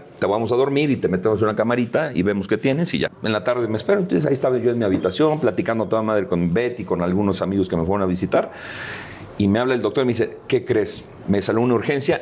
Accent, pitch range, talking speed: Mexican, 105-140 Hz, 270 wpm